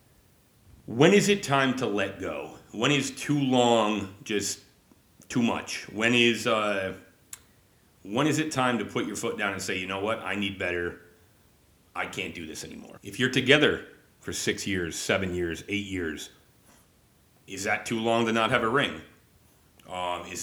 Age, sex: 40-59, male